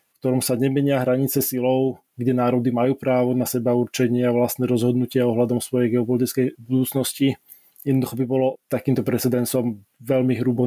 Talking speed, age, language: 150 wpm, 20-39, Czech